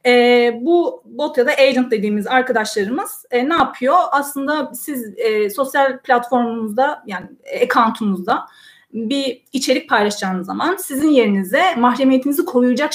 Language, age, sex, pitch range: Turkish, 30-49, female, 230-285 Hz